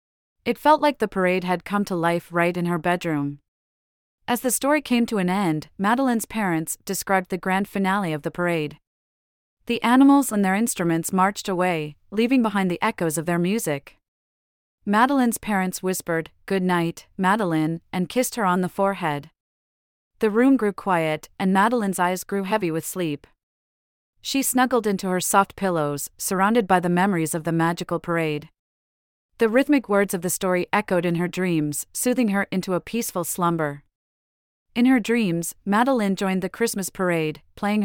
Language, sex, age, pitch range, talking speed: English, female, 30-49, 165-210 Hz, 165 wpm